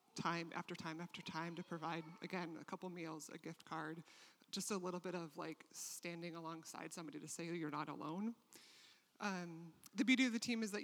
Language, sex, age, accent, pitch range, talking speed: English, male, 30-49, American, 175-200 Hz, 200 wpm